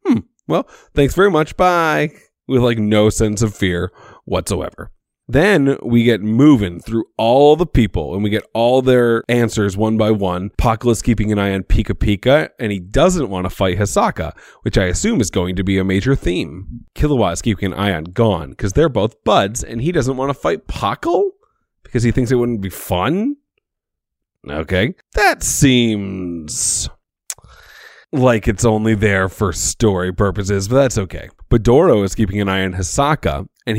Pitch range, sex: 100-130 Hz, male